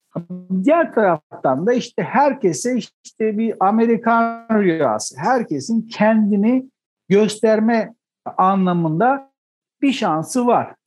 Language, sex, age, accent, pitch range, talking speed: Turkish, male, 60-79, native, 170-240 Hz, 90 wpm